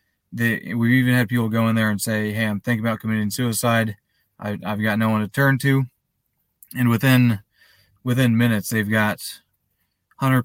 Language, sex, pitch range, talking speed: English, male, 105-120 Hz, 180 wpm